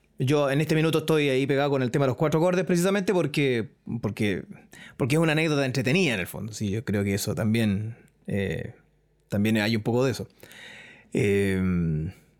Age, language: 30-49, Spanish